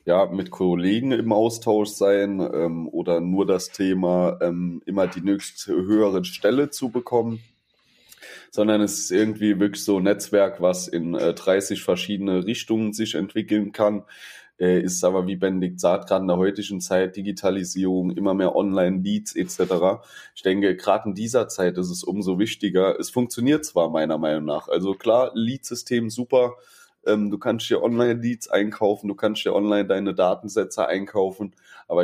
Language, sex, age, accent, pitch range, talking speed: German, male, 20-39, German, 90-110 Hz, 165 wpm